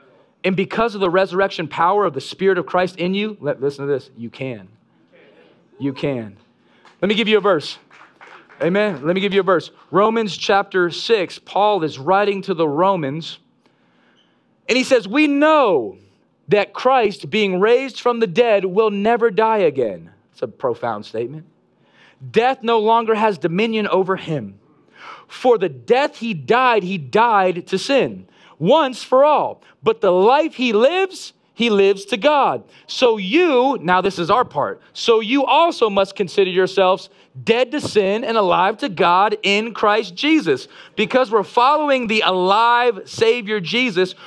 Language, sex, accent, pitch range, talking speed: English, male, American, 185-250 Hz, 165 wpm